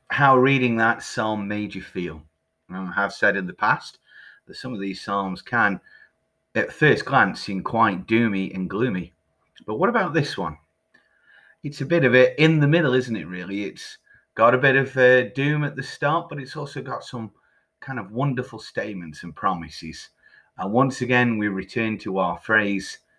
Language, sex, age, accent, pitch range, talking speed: English, male, 30-49, British, 95-140 Hz, 190 wpm